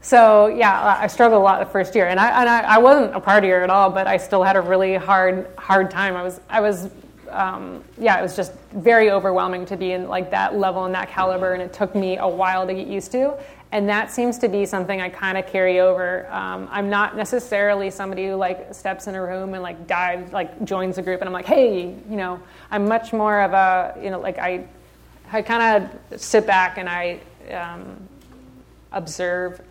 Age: 30-49